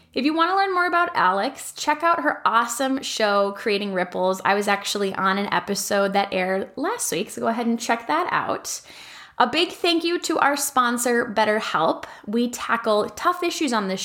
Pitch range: 195-265 Hz